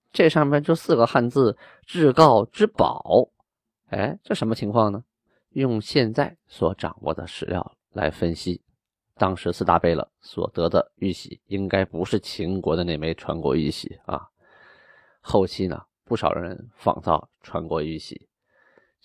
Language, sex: Chinese, male